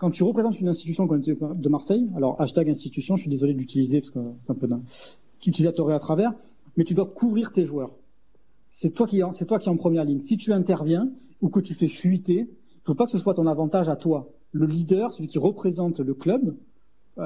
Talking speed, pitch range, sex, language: 220 wpm, 150-190 Hz, male, French